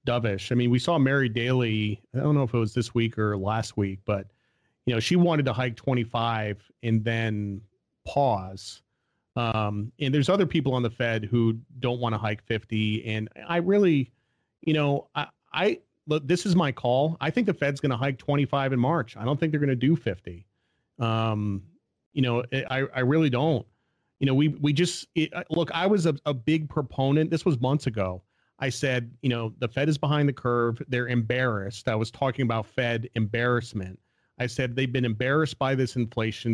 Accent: American